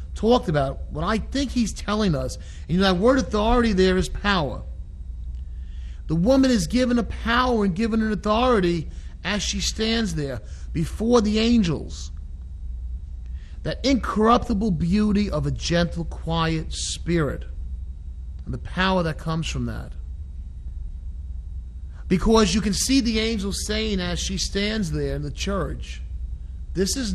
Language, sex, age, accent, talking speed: English, male, 40-59, American, 140 wpm